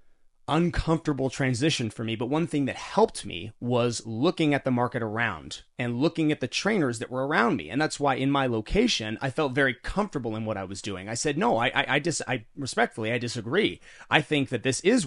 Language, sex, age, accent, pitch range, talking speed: English, male, 30-49, American, 115-155 Hz, 225 wpm